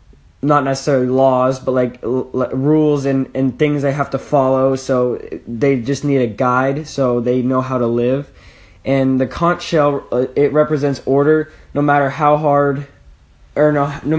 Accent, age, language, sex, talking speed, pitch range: American, 10-29, English, male, 180 wpm, 130-145 Hz